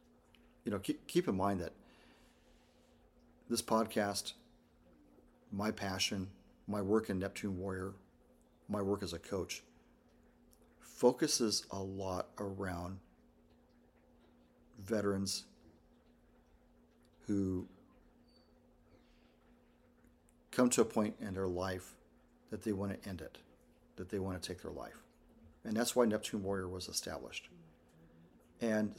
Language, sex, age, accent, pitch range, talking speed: English, male, 40-59, American, 95-110 Hz, 110 wpm